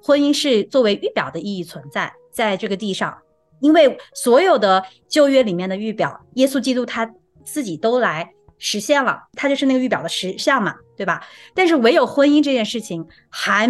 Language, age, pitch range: Chinese, 30-49, 200-290 Hz